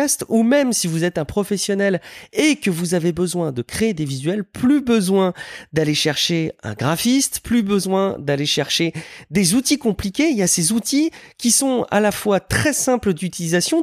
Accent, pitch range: French, 140-205 Hz